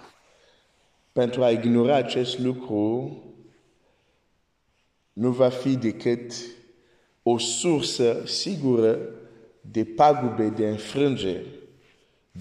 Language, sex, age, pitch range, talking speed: Romanian, male, 50-69, 115-145 Hz, 75 wpm